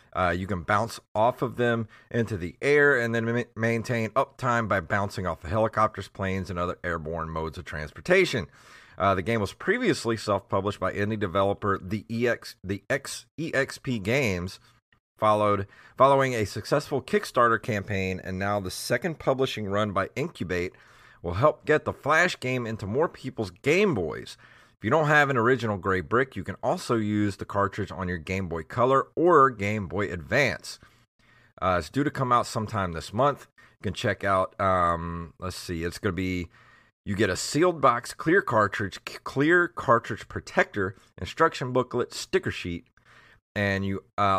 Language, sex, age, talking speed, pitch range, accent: English, male, 30-49, 170 wpm, 95-125 Hz, American